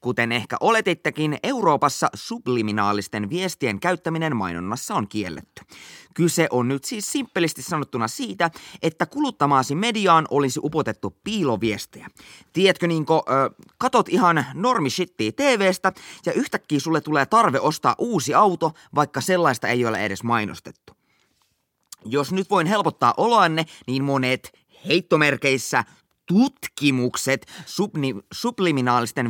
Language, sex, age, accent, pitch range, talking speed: Finnish, male, 20-39, native, 125-180 Hz, 110 wpm